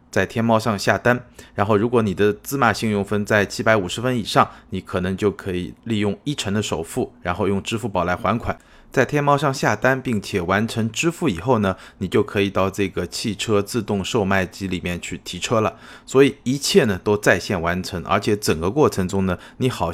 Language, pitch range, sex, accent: Chinese, 95-120 Hz, male, native